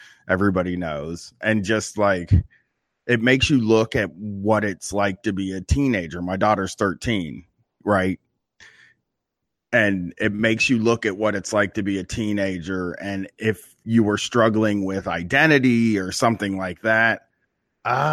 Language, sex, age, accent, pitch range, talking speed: English, male, 30-49, American, 95-120 Hz, 150 wpm